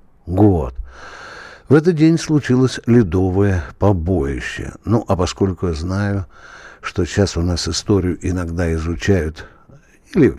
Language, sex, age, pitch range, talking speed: Russian, male, 60-79, 85-135 Hz, 115 wpm